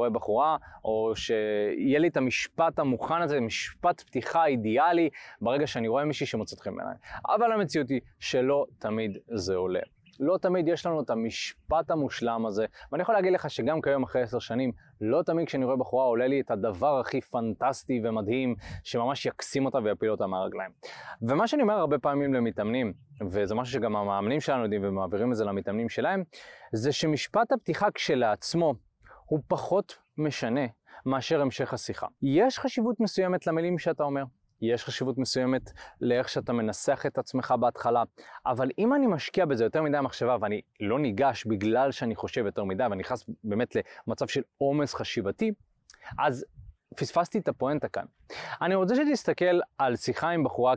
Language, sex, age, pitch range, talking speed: Hebrew, male, 20-39, 115-165 Hz, 160 wpm